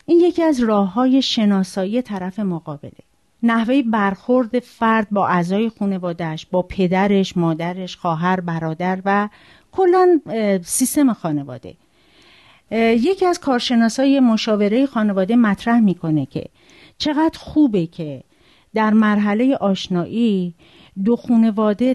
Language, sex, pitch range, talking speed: Persian, female, 190-260 Hz, 105 wpm